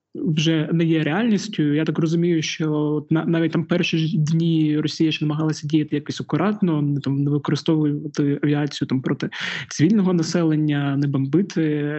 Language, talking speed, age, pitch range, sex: Ukrainian, 145 wpm, 20-39, 140-160 Hz, male